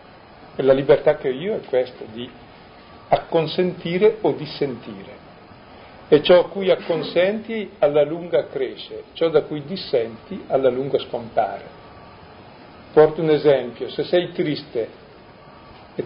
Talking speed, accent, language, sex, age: 125 wpm, native, Italian, male, 50-69